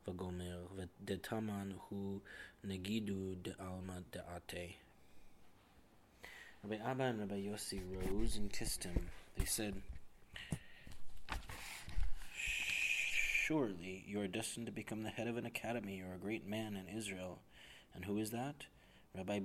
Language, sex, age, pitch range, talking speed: English, male, 20-39, 95-110 Hz, 125 wpm